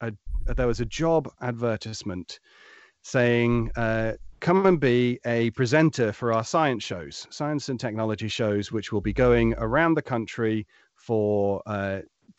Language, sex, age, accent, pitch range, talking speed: English, male, 40-59, British, 105-125 Hz, 145 wpm